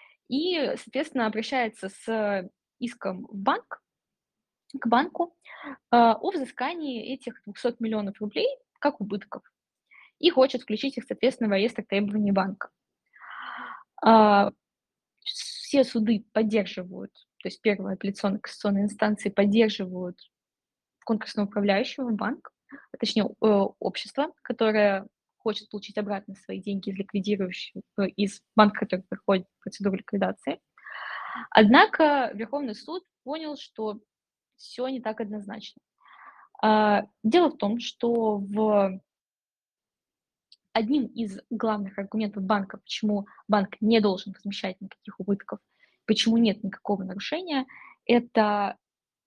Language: Russian